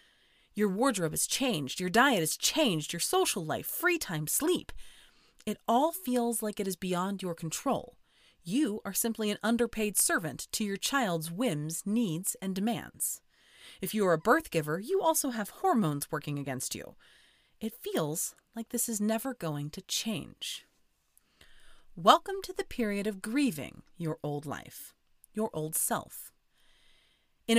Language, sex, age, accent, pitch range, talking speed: English, female, 30-49, American, 170-250 Hz, 155 wpm